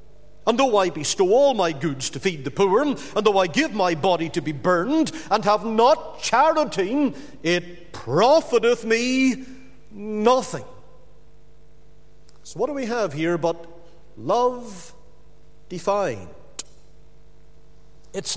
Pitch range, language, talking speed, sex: 175-270 Hz, English, 125 wpm, male